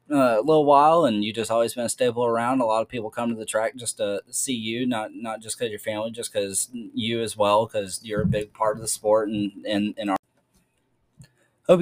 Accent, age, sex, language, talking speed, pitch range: American, 20-39, male, English, 245 wpm, 105-120 Hz